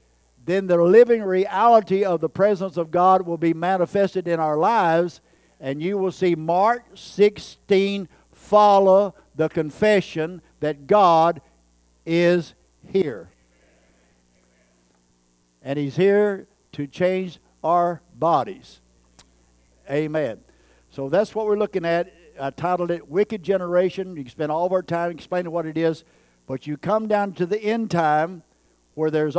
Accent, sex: American, male